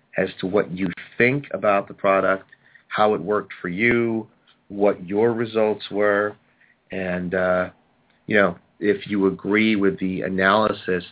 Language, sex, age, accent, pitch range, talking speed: English, male, 40-59, American, 90-105 Hz, 145 wpm